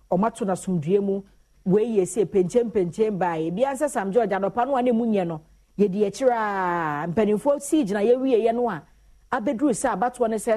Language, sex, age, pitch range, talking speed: English, female, 40-59, 185-240 Hz, 160 wpm